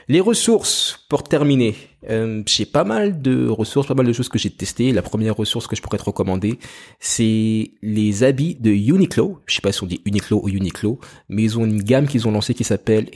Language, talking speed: French, 225 wpm